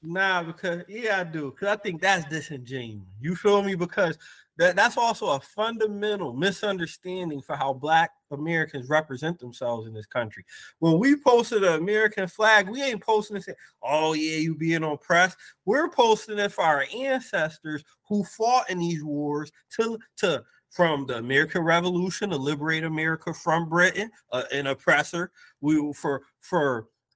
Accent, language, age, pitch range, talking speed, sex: American, English, 30-49, 155-215 Hz, 160 wpm, male